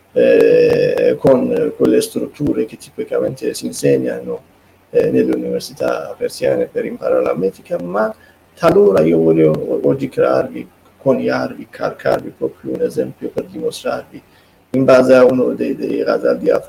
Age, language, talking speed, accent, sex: 30-49, Italian, 135 wpm, native, male